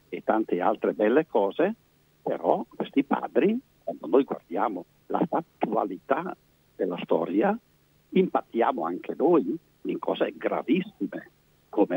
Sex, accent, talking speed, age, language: male, native, 110 wpm, 60-79, Italian